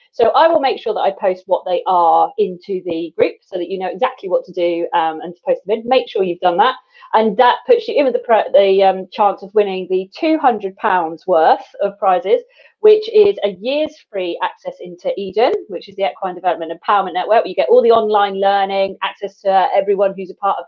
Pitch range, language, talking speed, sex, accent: 185-255 Hz, English, 225 wpm, female, British